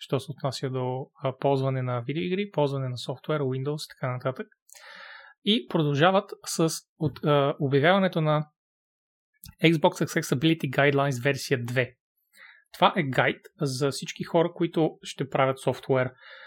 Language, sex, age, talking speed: Bulgarian, male, 30-49, 135 wpm